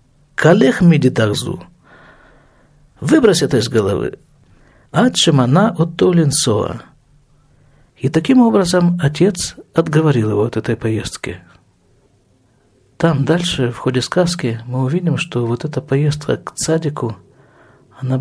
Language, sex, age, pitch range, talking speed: Russian, male, 50-69, 125-175 Hz, 110 wpm